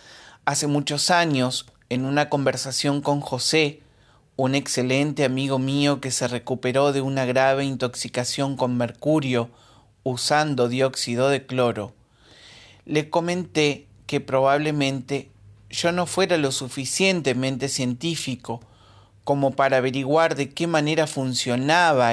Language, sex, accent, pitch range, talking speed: Spanish, male, Argentinian, 120-145 Hz, 115 wpm